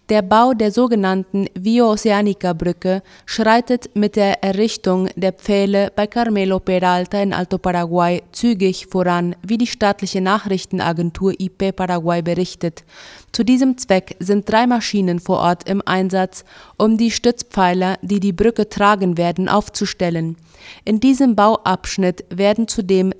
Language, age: German, 30-49